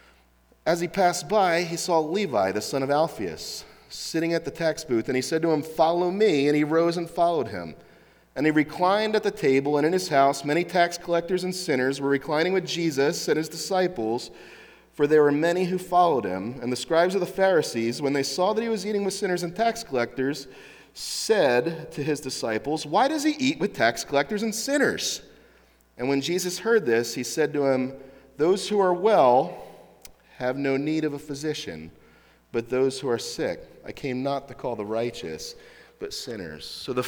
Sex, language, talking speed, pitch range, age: male, English, 200 wpm, 135-185 Hz, 40-59